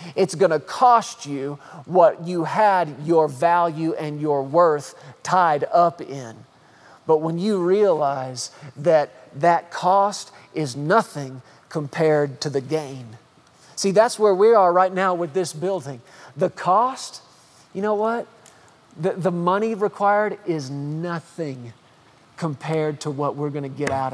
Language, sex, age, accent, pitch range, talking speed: English, male, 40-59, American, 155-195 Hz, 140 wpm